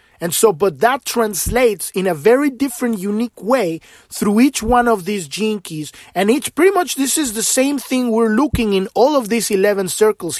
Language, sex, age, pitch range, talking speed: English, male, 30-49, 175-230 Hz, 200 wpm